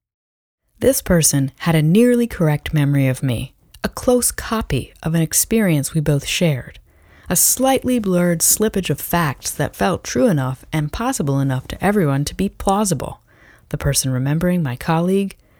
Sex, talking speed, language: female, 160 wpm, English